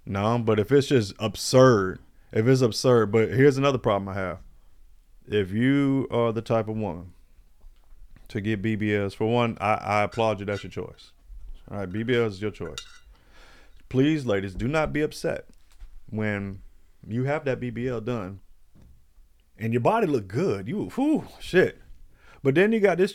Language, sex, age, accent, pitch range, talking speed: English, male, 30-49, American, 105-155 Hz, 170 wpm